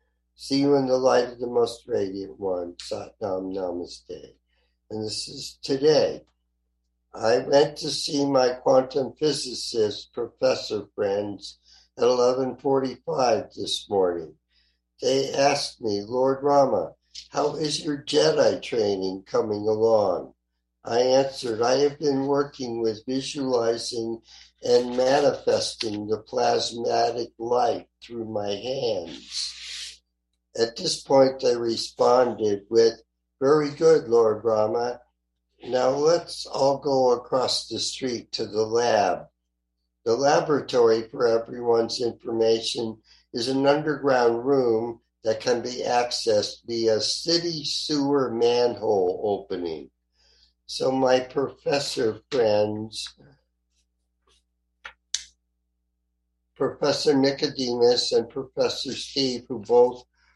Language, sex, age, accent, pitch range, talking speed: English, male, 50-69, American, 95-135 Hz, 105 wpm